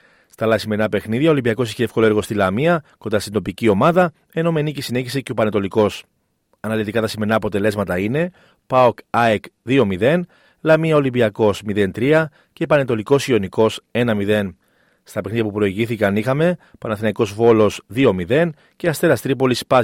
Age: 40-59